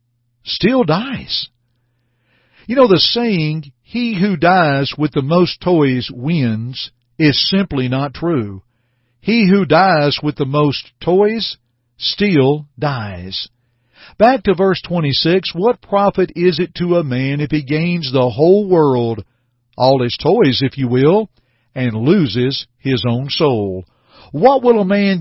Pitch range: 120-165 Hz